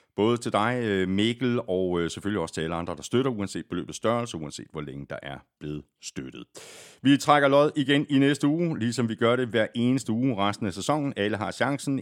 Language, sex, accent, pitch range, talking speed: Danish, male, native, 95-130 Hz, 210 wpm